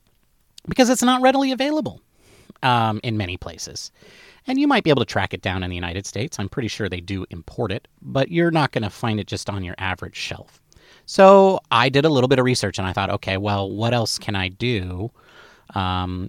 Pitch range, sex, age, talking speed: 100-155 Hz, male, 30-49, 220 wpm